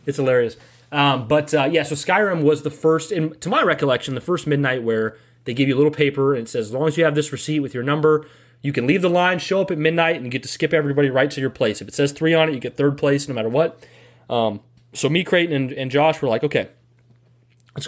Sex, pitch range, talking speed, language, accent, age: male, 120-150 Hz, 265 wpm, English, American, 30-49